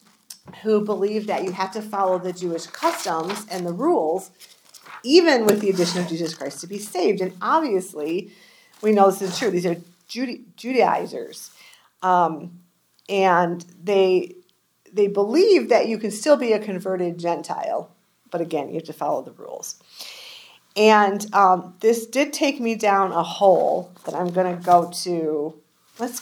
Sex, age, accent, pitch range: female, 40-59, American, 180-220 Hz